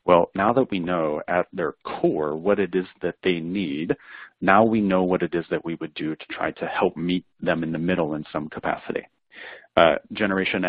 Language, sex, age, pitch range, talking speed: English, male, 40-59, 80-95 Hz, 215 wpm